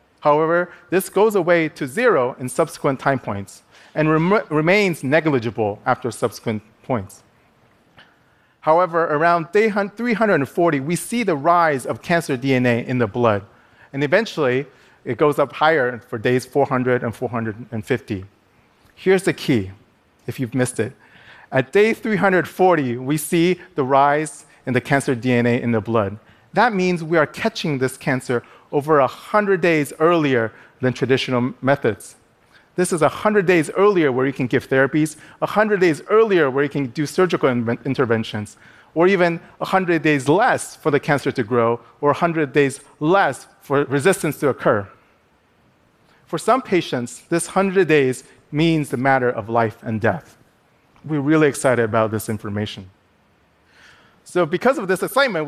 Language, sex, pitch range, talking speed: Arabic, male, 125-170 Hz, 150 wpm